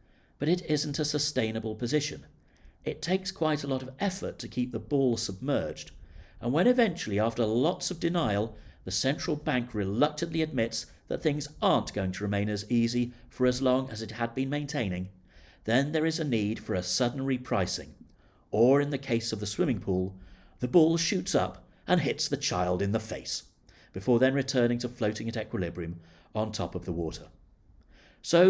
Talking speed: 185 wpm